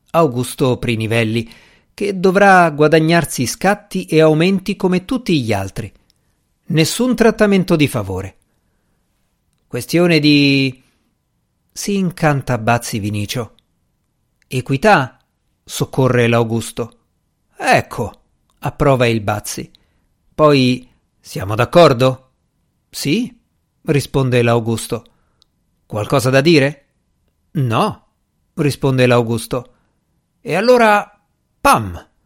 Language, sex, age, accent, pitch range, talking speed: Italian, male, 50-69, native, 115-170 Hz, 80 wpm